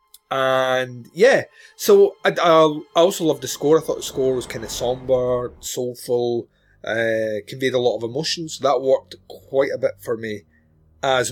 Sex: male